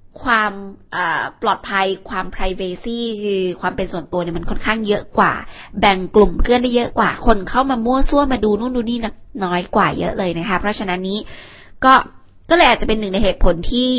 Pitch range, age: 185-235 Hz, 20-39